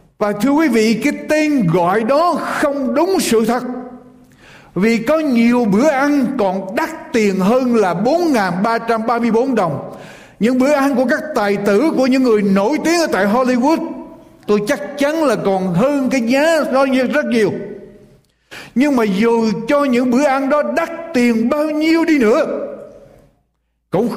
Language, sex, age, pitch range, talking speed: Vietnamese, male, 60-79, 210-295 Hz, 160 wpm